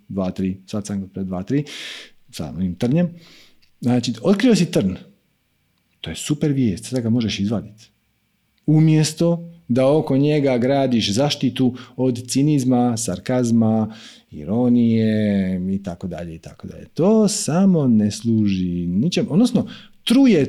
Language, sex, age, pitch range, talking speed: Croatian, male, 40-59, 115-185 Hz, 120 wpm